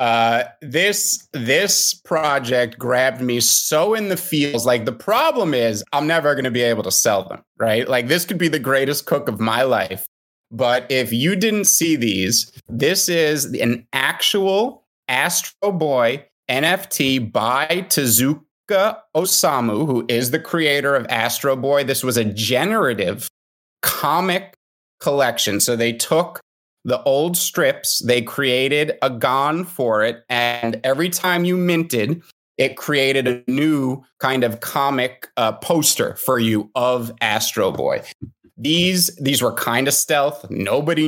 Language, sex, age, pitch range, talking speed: English, male, 30-49, 120-155 Hz, 150 wpm